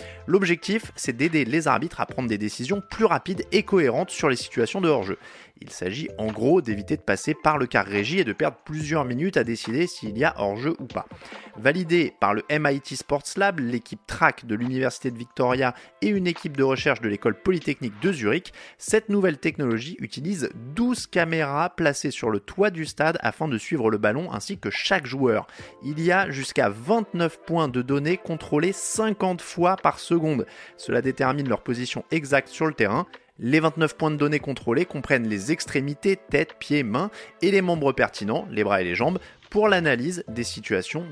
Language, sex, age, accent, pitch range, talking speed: French, male, 30-49, French, 125-180 Hz, 190 wpm